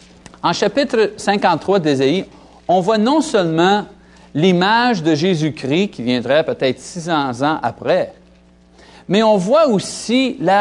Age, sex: 50-69, male